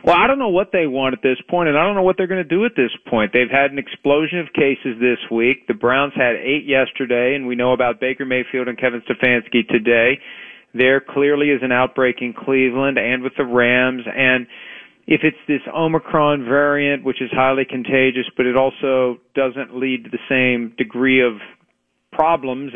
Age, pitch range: 40-59, 125-165 Hz